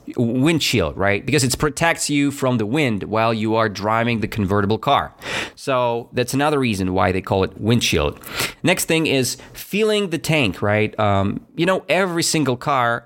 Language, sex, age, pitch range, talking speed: English, male, 30-49, 105-135 Hz, 175 wpm